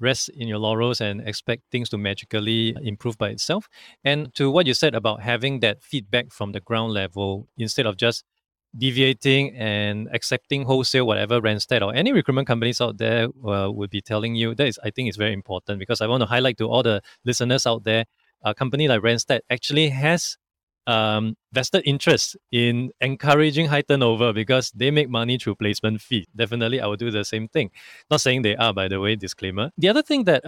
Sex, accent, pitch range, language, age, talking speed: male, Malaysian, 110-140 Hz, English, 20-39, 200 wpm